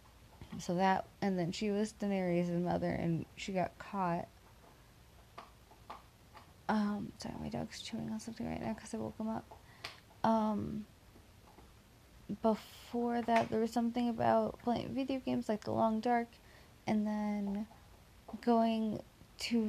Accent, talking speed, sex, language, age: American, 135 wpm, female, English, 20-39